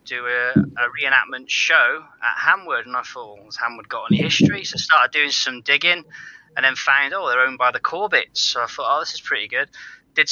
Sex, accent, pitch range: male, British, 125-145 Hz